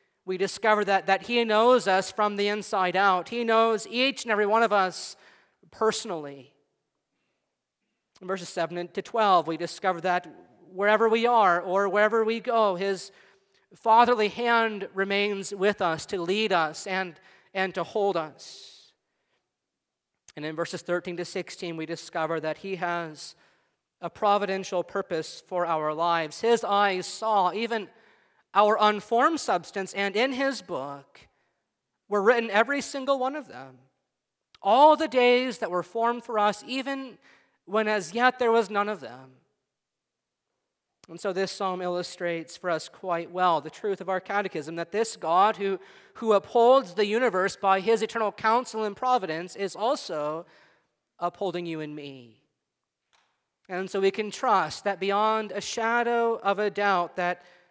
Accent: American